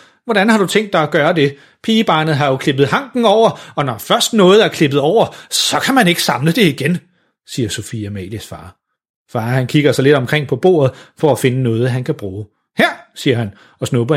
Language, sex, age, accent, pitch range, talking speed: Danish, male, 30-49, native, 120-165 Hz, 220 wpm